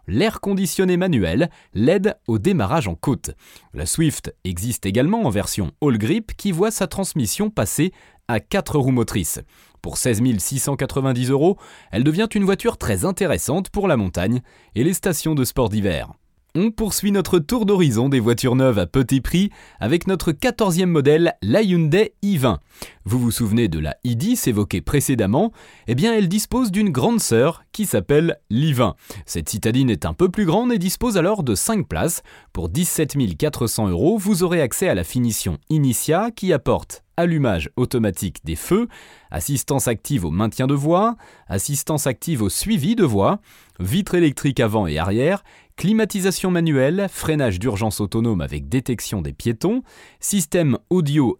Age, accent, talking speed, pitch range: 30-49, French, 160 wpm, 110-190 Hz